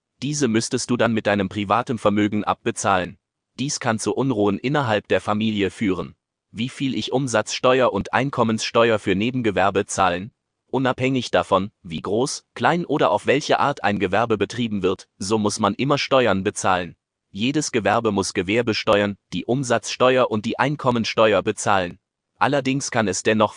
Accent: German